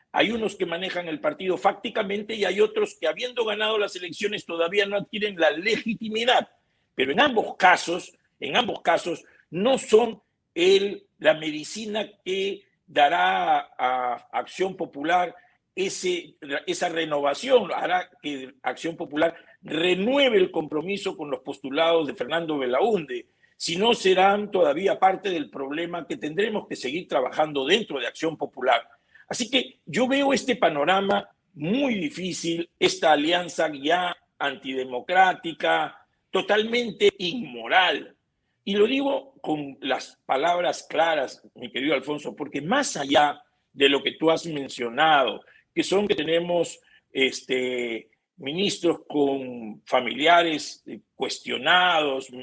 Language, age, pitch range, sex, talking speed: Spanish, 50-69, 150-215 Hz, male, 125 wpm